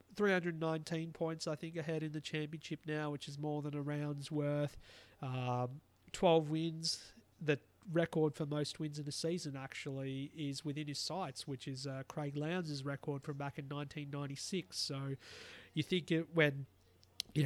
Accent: Australian